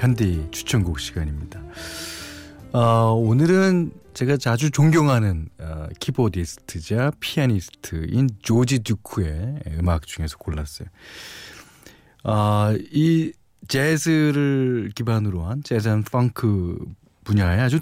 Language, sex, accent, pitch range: Korean, male, native, 90-145 Hz